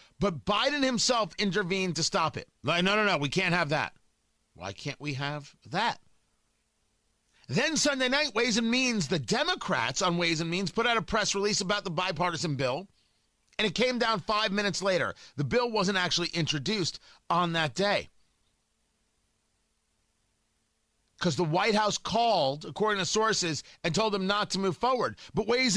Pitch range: 170-220 Hz